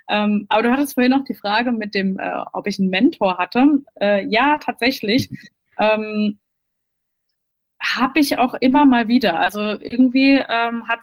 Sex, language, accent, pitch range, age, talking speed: female, German, German, 210-275 Hz, 20-39, 165 wpm